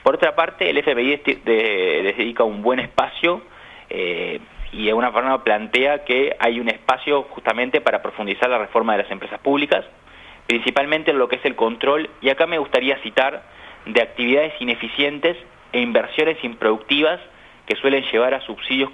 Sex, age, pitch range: male, 30-49, 110-150 Hz